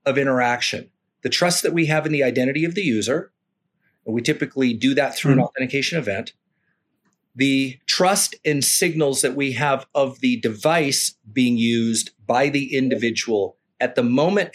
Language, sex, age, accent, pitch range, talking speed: English, male, 40-59, American, 130-175 Hz, 165 wpm